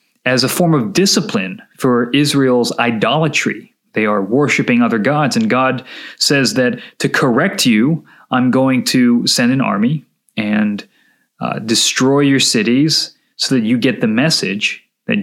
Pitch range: 135-215 Hz